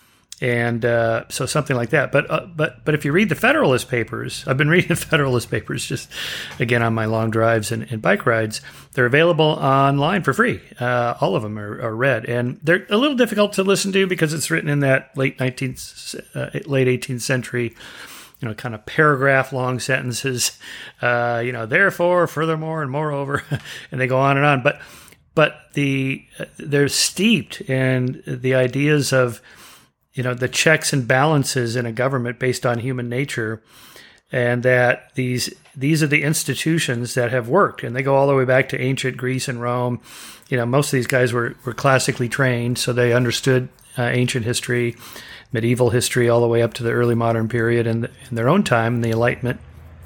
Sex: male